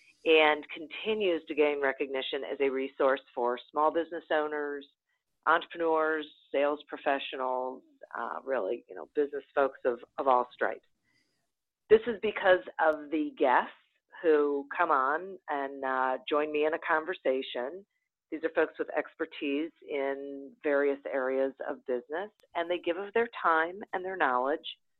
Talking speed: 145 wpm